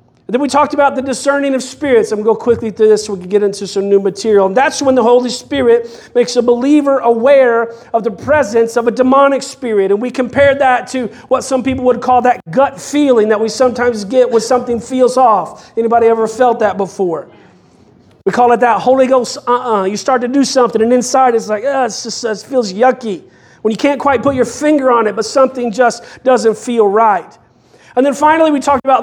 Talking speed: 225 wpm